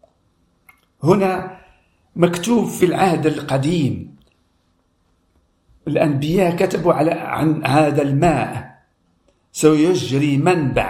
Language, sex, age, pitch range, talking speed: Arabic, male, 50-69, 105-155 Hz, 65 wpm